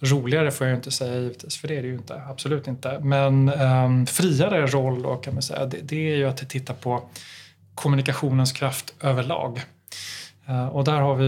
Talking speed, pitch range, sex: 195 wpm, 130-145 Hz, male